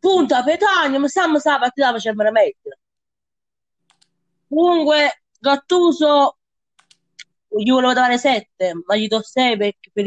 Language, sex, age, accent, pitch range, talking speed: Italian, female, 20-39, native, 210-275 Hz, 115 wpm